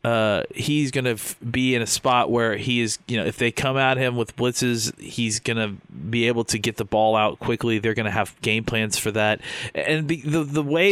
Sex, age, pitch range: male, 30-49, 110-125 Hz